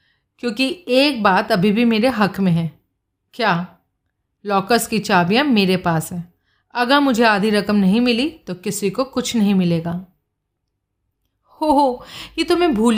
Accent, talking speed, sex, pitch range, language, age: native, 155 wpm, female, 185-260 Hz, Hindi, 40-59